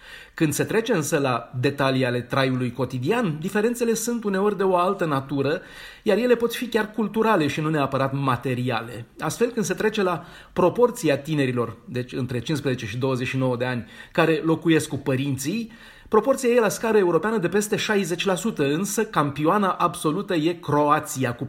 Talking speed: 160 wpm